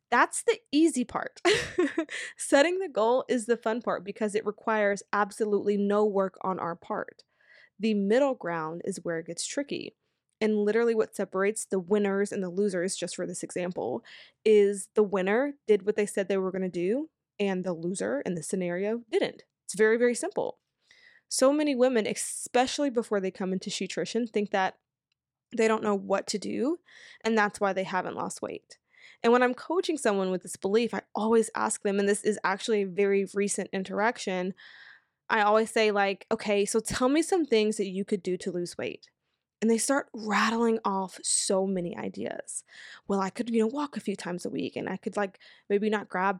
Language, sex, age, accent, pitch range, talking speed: English, female, 20-39, American, 195-240 Hz, 195 wpm